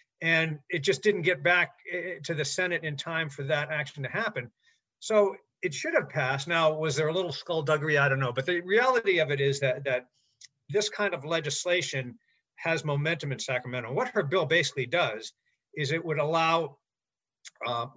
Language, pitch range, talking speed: English, 140-180 Hz, 185 wpm